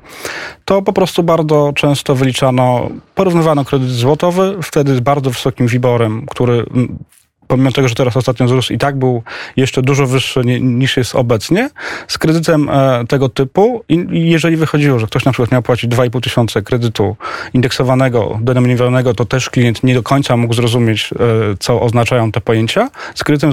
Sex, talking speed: male, 160 wpm